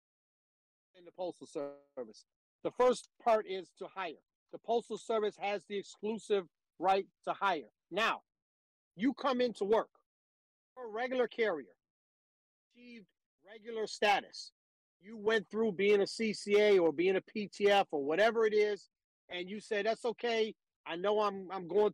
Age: 50-69